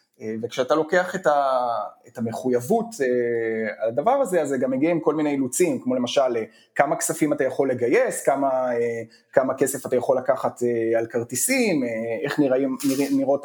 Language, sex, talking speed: Hebrew, male, 155 wpm